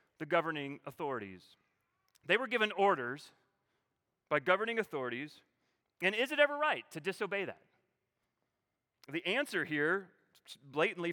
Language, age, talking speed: English, 30-49, 120 wpm